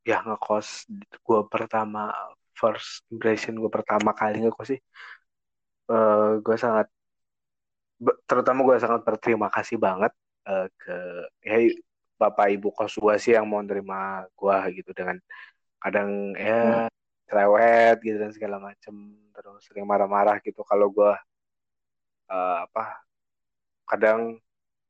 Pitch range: 100-120 Hz